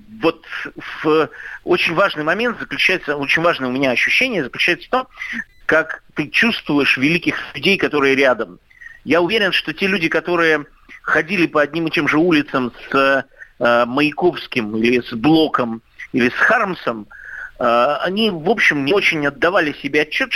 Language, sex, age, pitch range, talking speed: Russian, male, 50-69, 140-190 Hz, 155 wpm